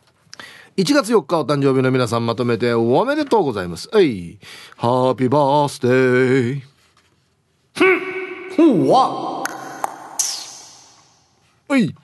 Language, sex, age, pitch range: Japanese, male, 40-59, 115-160 Hz